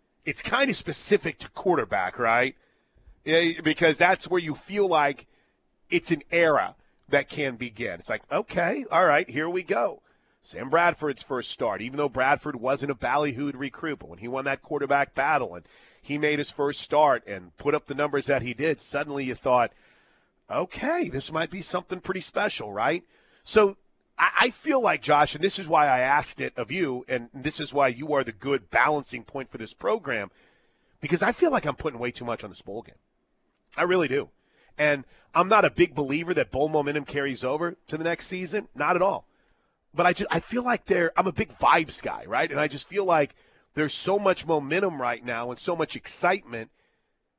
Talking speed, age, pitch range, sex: 200 wpm, 40-59, 135-175 Hz, male